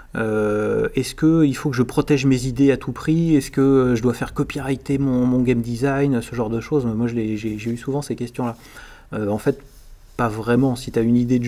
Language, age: French, 30-49